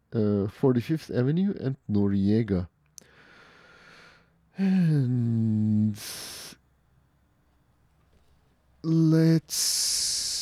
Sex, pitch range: male, 110-155 Hz